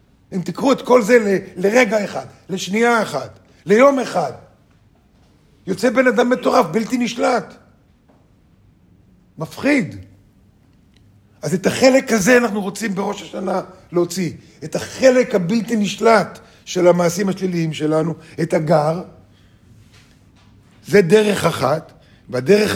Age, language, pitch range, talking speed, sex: 50-69, Hebrew, 140-210 Hz, 110 wpm, male